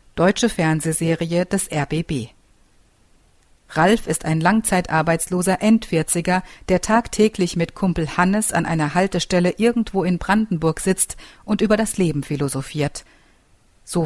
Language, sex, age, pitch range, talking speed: German, female, 50-69, 155-195 Hz, 115 wpm